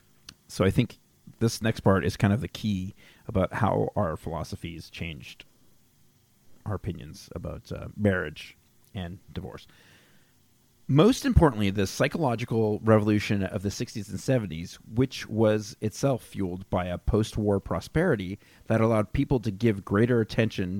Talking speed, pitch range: 140 wpm, 100-125 Hz